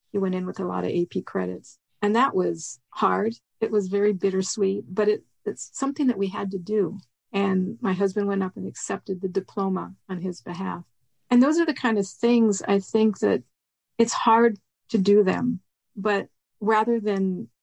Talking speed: 185 wpm